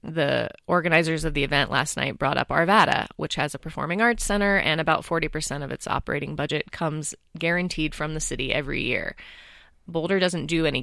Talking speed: 195 wpm